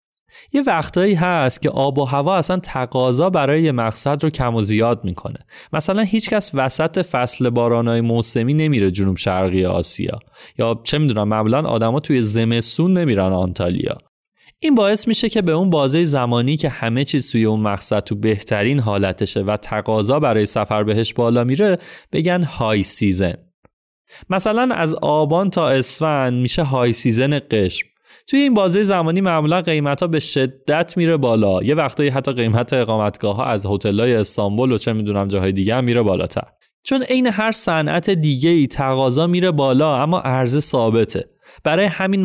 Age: 30-49